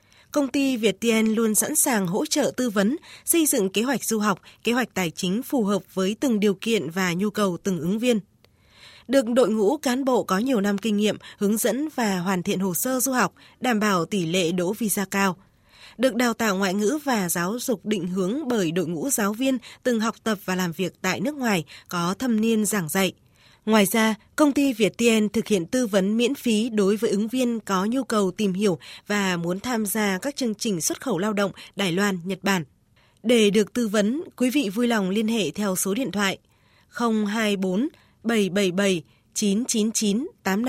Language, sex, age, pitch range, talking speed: Vietnamese, female, 20-39, 195-235 Hz, 205 wpm